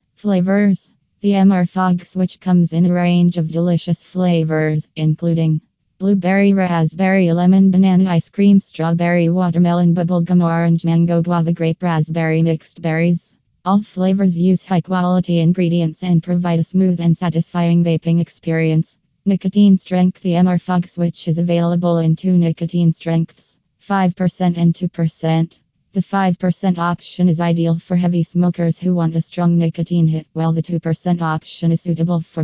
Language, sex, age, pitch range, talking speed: English, female, 20-39, 165-180 Hz, 145 wpm